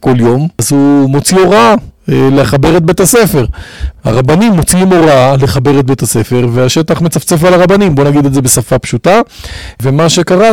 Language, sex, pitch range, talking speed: Hebrew, male, 125-165 Hz, 165 wpm